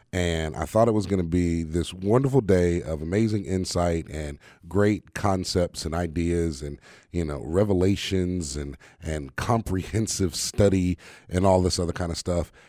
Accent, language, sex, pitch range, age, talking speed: American, English, male, 85-110 Hz, 30-49, 160 wpm